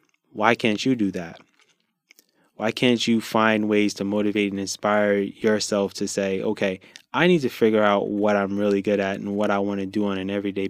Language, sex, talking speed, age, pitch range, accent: English, male, 210 wpm, 20-39, 100-110 Hz, American